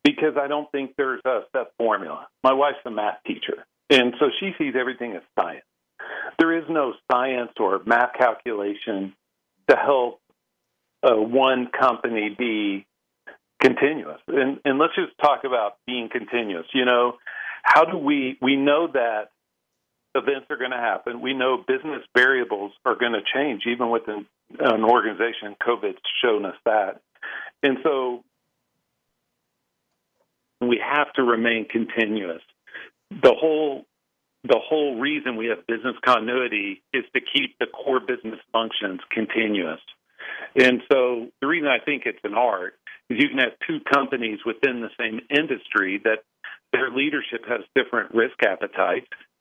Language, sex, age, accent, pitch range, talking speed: English, male, 50-69, American, 105-140 Hz, 145 wpm